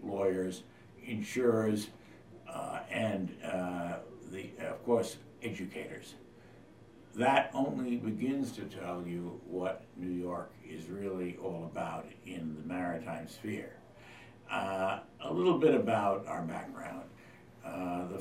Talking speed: 115 wpm